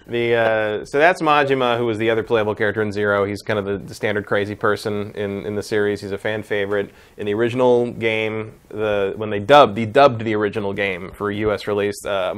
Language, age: English, 20-39